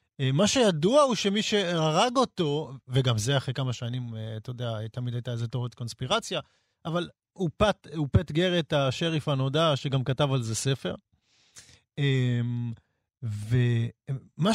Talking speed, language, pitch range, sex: 120 wpm, Hebrew, 125-165 Hz, male